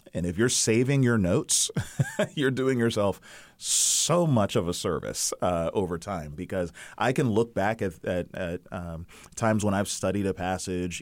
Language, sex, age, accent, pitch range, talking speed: English, male, 30-49, American, 95-125 Hz, 175 wpm